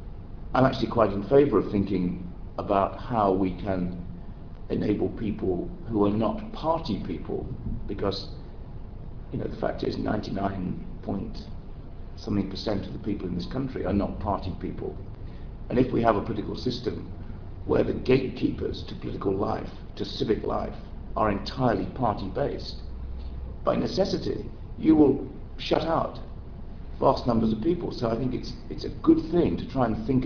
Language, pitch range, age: English, 95-125 Hz, 50-69